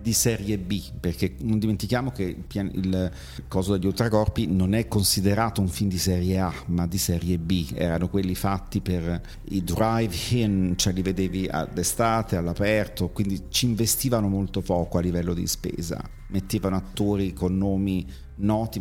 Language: Italian